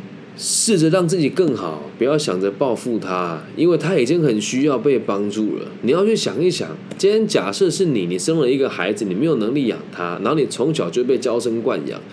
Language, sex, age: Chinese, male, 20-39